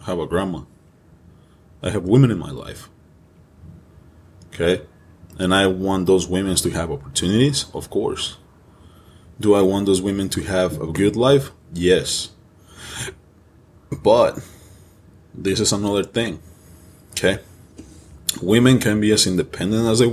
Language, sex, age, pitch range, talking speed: English, male, 20-39, 90-105 Hz, 130 wpm